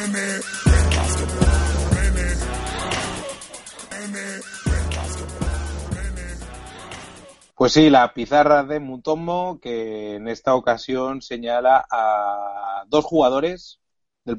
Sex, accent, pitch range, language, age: male, Spanish, 110-135 Hz, Spanish, 30-49